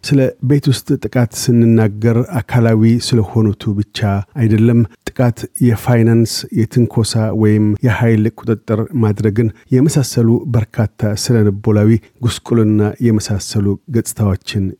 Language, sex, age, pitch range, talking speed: Amharic, male, 50-69, 105-120 Hz, 95 wpm